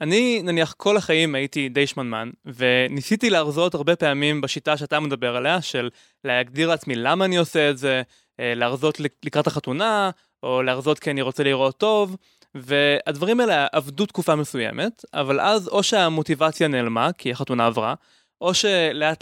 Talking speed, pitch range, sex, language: 150 wpm, 140-205 Hz, male, Hebrew